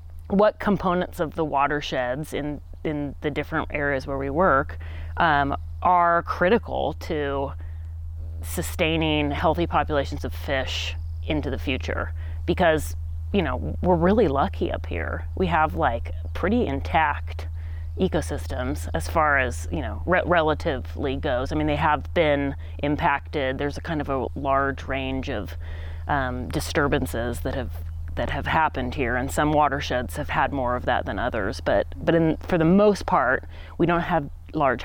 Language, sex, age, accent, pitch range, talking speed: English, female, 30-49, American, 80-95 Hz, 155 wpm